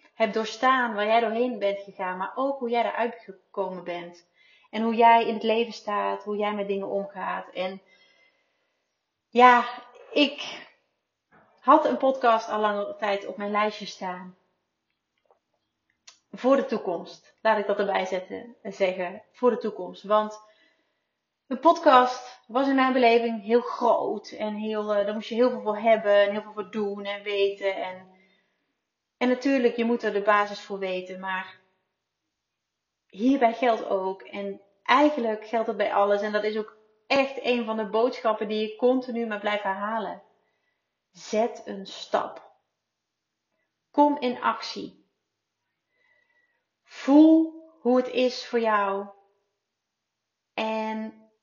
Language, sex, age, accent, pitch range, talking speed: Dutch, female, 30-49, Dutch, 200-240 Hz, 140 wpm